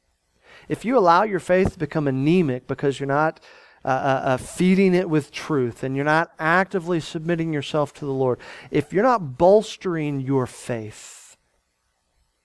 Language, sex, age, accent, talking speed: English, male, 40-59, American, 155 wpm